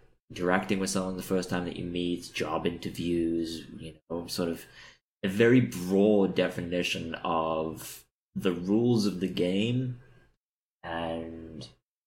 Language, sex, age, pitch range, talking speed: English, male, 20-39, 85-110 Hz, 130 wpm